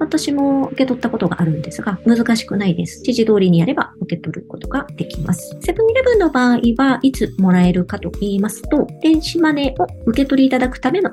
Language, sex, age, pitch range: Japanese, male, 40-59, 180-265 Hz